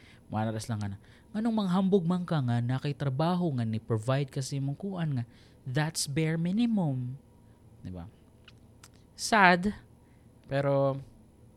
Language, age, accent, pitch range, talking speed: Filipino, 20-39, native, 115-165 Hz, 110 wpm